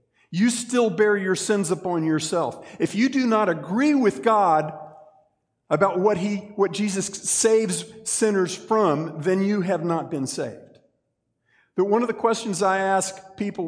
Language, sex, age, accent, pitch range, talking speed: English, male, 50-69, American, 120-180 Hz, 160 wpm